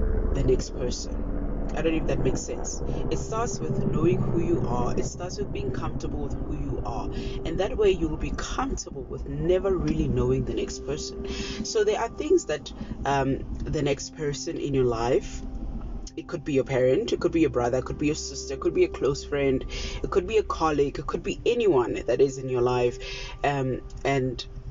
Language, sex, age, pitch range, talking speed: English, female, 20-39, 130-195 Hz, 215 wpm